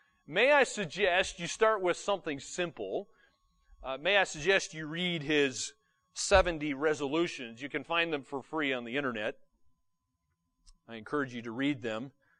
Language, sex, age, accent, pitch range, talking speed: English, male, 40-59, American, 125-185 Hz, 155 wpm